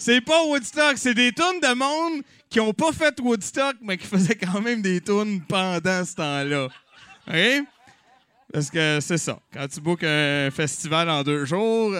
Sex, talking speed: male, 180 wpm